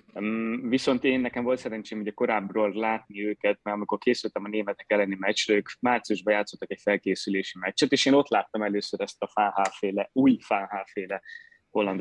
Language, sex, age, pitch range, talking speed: Hungarian, male, 20-39, 105-125 Hz, 165 wpm